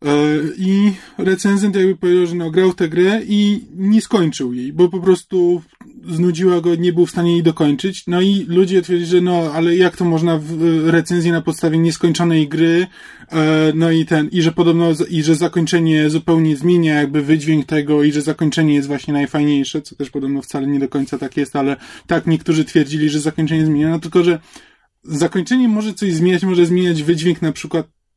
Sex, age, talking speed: male, 20-39, 190 wpm